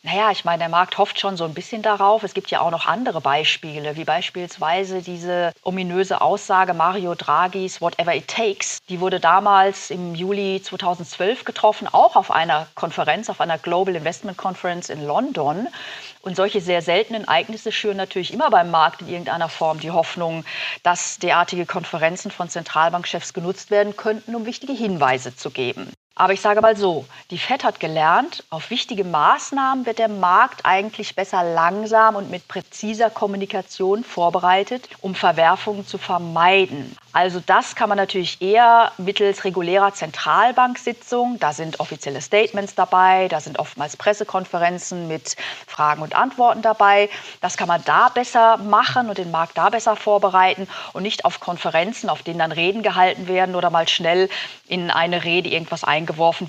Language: German